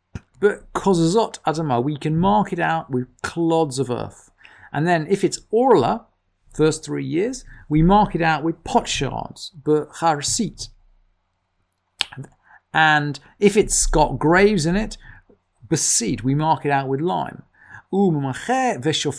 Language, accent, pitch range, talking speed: English, British, 120-170 Hz, 115 wpm